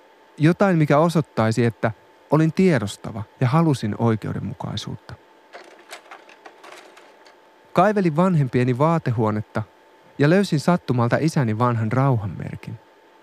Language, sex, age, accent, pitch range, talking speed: Finnish, male, 30-49, native, 120-175 Hz, 80 wpm